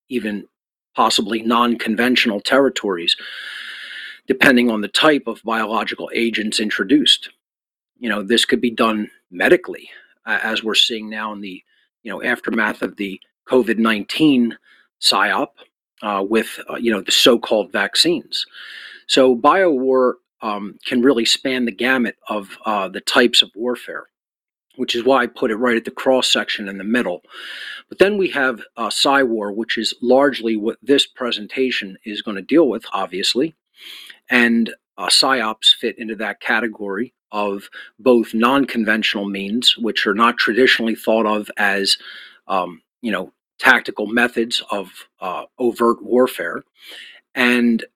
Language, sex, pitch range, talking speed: English, male, 110-125 Hz, 145 wpm